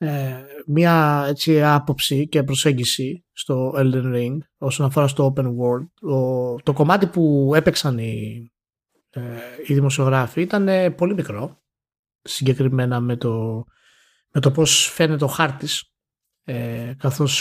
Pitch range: 130-160 Hz